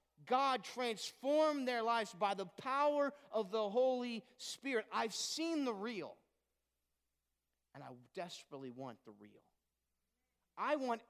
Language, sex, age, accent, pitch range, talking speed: English, male, 40-59, American, 165-240 Hz, 125 wpm